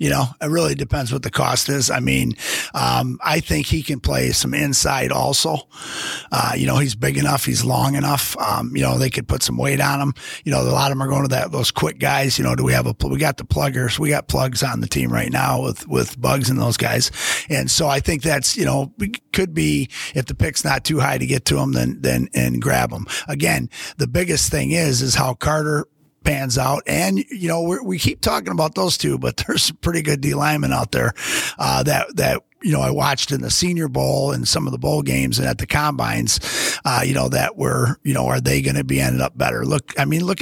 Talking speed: 255 wpm